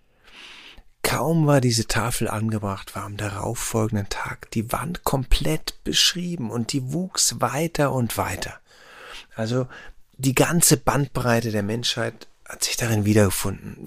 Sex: male